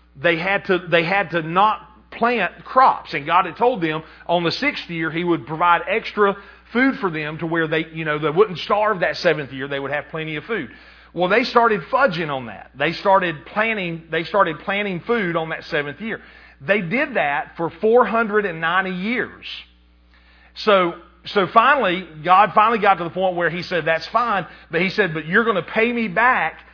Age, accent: 40-59, American